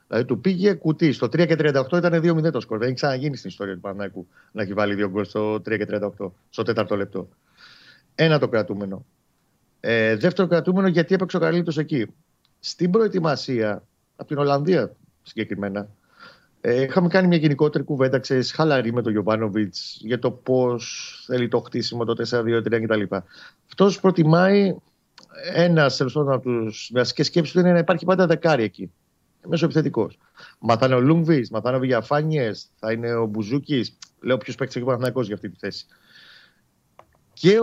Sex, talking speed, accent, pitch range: male, 155 wpm, native, 110-170 Hz